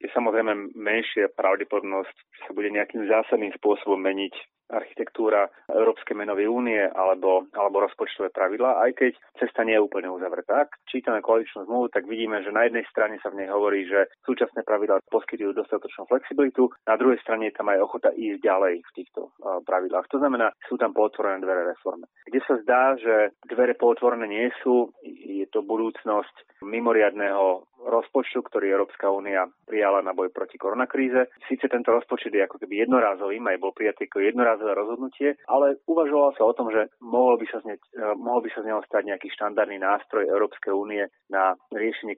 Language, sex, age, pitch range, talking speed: Slovak, male, 30-49, 100-125 Hz, 170 wpm